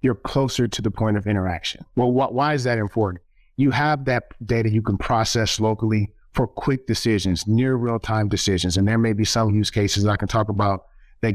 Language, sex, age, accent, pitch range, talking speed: English, male, 30-49, American, 100-120 Hz, 205 wpm